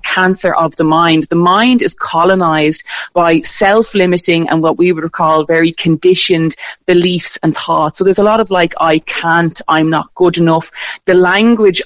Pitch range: 165-195 Hz